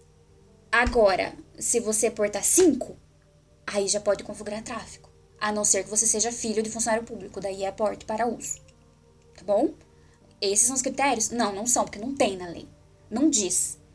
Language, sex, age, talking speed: Portuguese, female, 10-29, 175 wpm